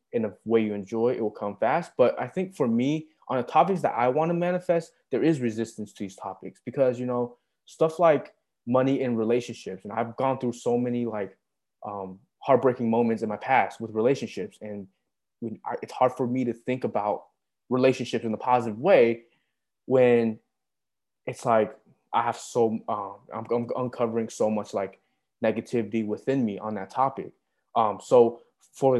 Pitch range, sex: 110-135 Hz, male